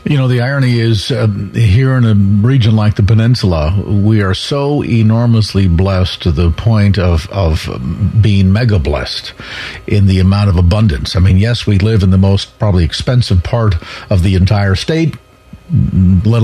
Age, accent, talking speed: 50-69, American, 170 wpm